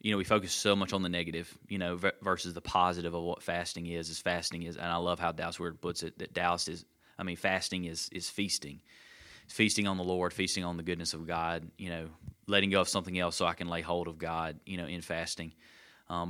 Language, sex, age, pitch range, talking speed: English, male, 30-49, 85-100 Hz, 245 wpm